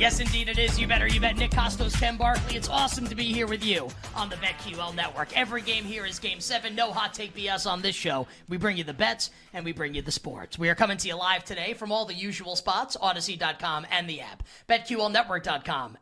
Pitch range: 165-220 Hz